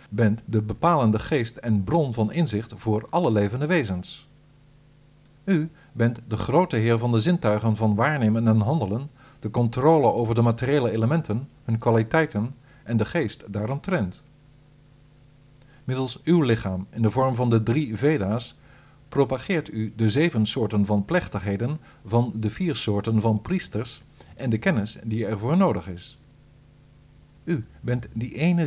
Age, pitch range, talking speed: 50-69, 110-145 Hz, 150 wpm